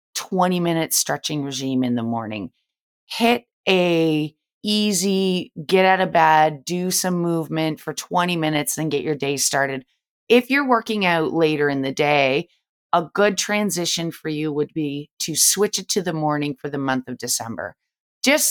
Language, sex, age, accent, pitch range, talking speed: English, female, 30-49, American, 150-185 Hz, 170 wpm